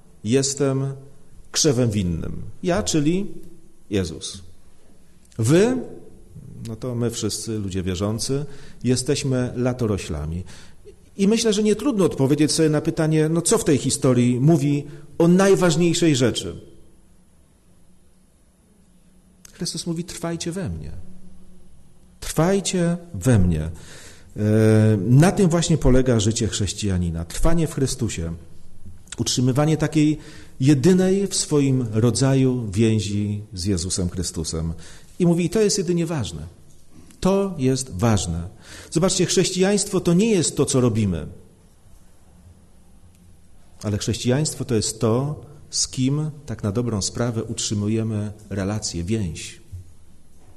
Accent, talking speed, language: native, 110 wpm, Polish